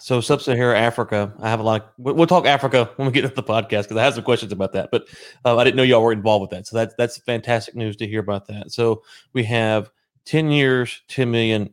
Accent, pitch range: American, 105-125 Hz